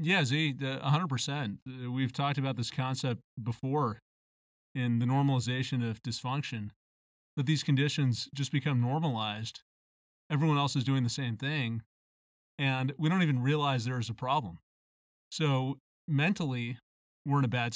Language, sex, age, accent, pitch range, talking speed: English, male, 30-49, American, 120-150 Hz, 140 wpm